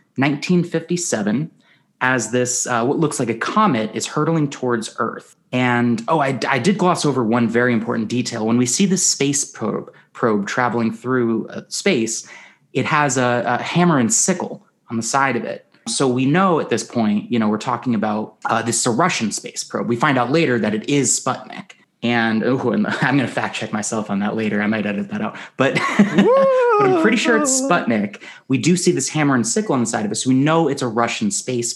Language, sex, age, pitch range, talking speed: English, male, 30-49, 115-165 Hz, 215 wpm